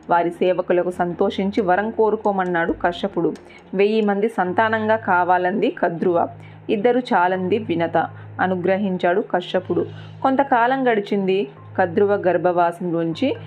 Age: 30-49